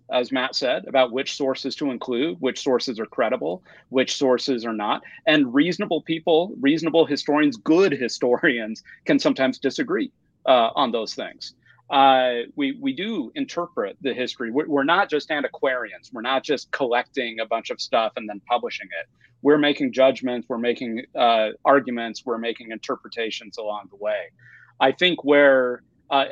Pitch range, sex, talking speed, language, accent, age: 120-150 Hz, male, 160 wpm, English, American, 40-59